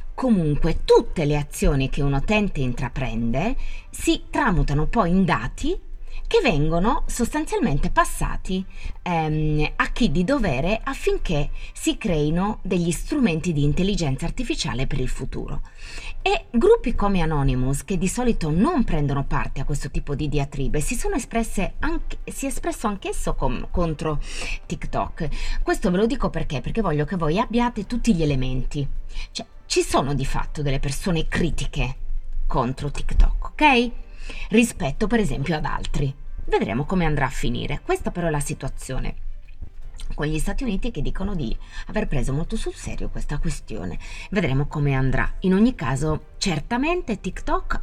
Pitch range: 140-230 Hz